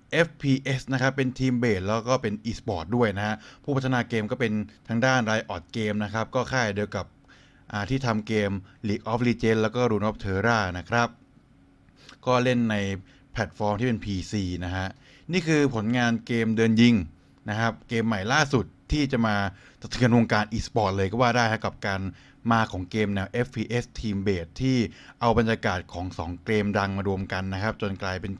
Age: 20-39